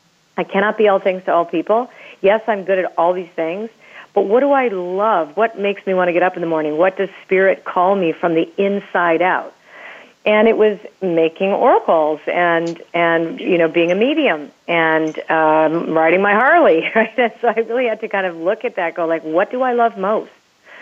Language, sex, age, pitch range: English, female, 50-69, 165-200 Hz